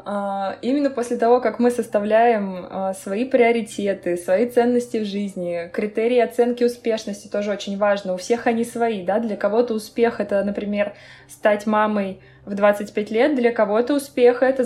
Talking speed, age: 145 wpm, 20-39